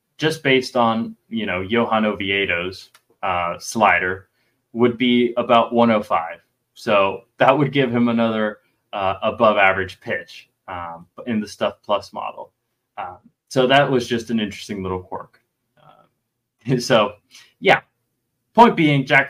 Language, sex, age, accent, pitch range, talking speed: English, male, 20-39, American, 110-130 Hz, 145 wpm